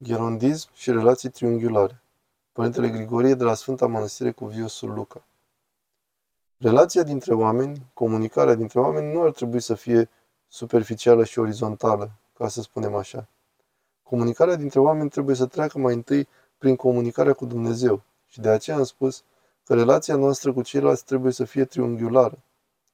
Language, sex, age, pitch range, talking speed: Romanian, male, 20-39, 120-135 Hz, 150 wpm